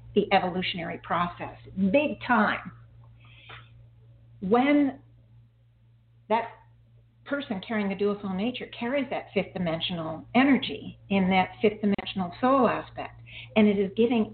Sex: female